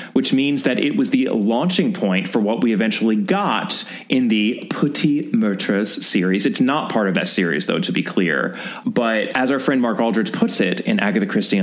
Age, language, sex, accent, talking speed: 20-39, English, male, American, 200 wpm